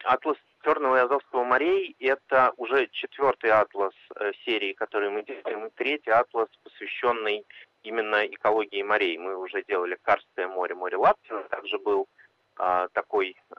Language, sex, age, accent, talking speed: Russian, male, 30-49, native, 135 wpm